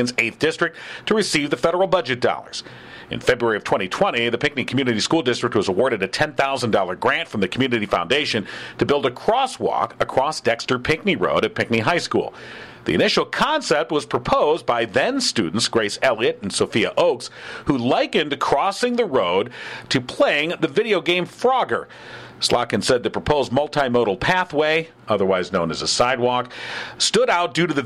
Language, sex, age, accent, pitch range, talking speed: English, male, 50-69, American, 120-175 Hz, 165 wpm